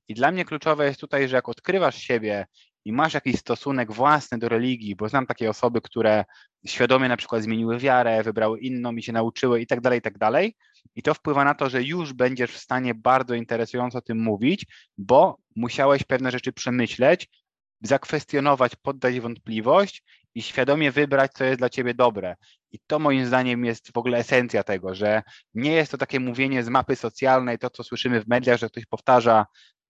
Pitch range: 115-130 Hz